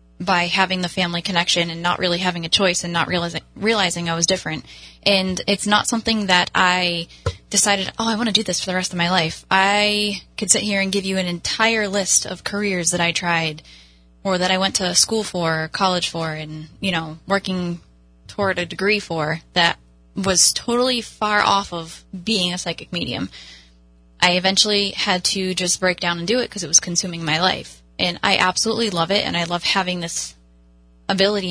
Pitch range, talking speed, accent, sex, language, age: 165-205 Hz, 205 wpm, American, female, English, 10-29